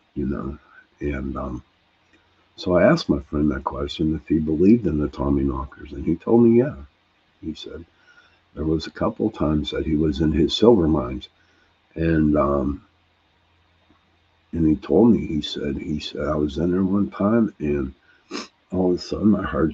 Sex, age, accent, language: male, 60-79, American, English